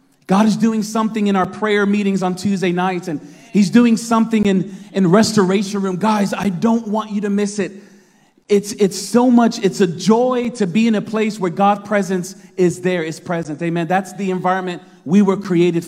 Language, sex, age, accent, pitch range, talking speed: English, male, 30-49, American, 180-220 Hz, 200 wpm